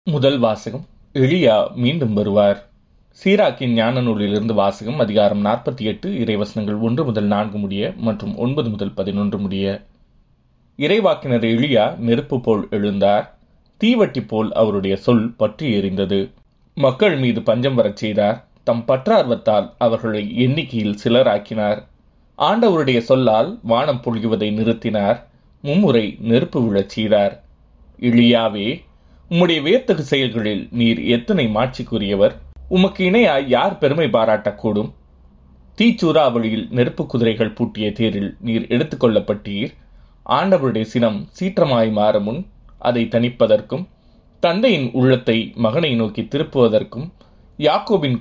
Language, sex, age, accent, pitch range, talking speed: Tamil, male, 30-49, native, 105-130 Hz, 105 wpm